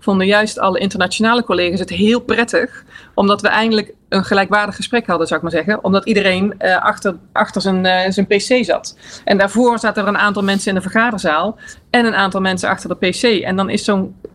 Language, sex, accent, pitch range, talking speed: Dutch, female, Dutch, 190-225 Hz, 210 wpm